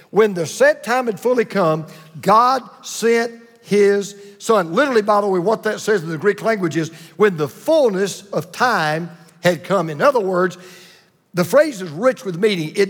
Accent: American